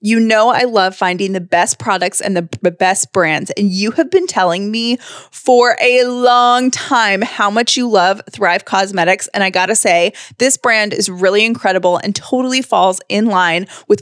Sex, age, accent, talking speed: female, 20-39, American, 185 wpm